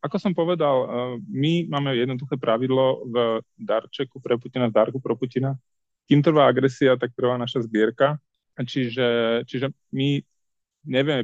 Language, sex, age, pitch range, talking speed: Slovak, male, 30-49, 110-125 Hz, 140 wpm